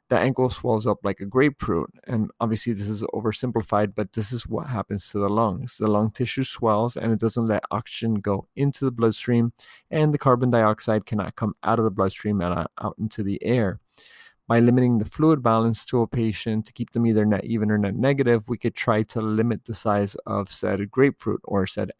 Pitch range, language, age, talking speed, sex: 105-120 Hz, English, 30-49, 210 wpm, male